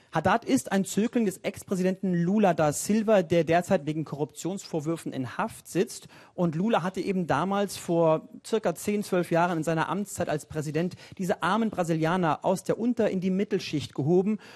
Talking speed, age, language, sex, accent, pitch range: 170 wpm, 40-59, German, male, German, 165-200 Hz